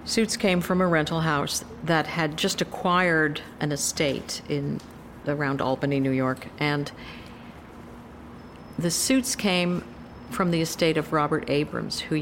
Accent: American